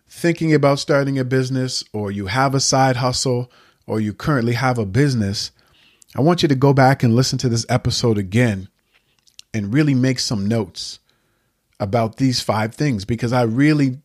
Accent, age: American, 40-59